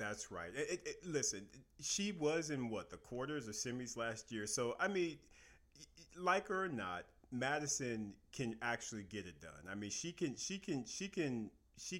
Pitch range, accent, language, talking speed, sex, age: 100-135 Hz, American, English, 185 wpm, male, 40-59